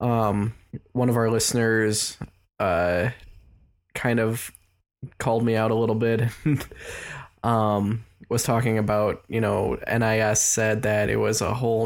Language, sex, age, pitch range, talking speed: English, male, 10-29, 105-125 Hz, 135 wpm